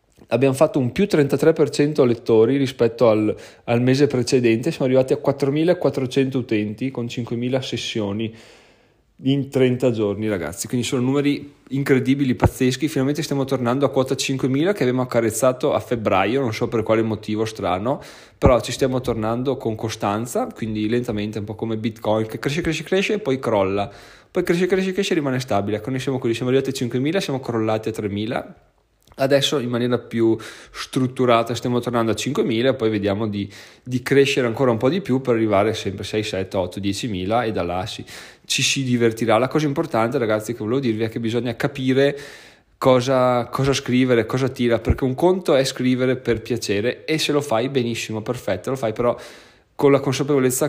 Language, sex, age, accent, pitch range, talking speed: Italian, male, 20-39, native, 110-135 Hz, 180 wpm